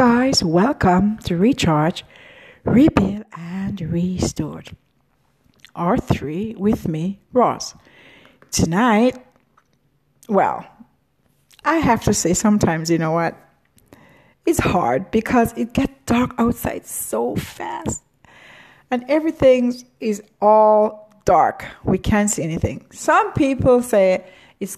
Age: 60-79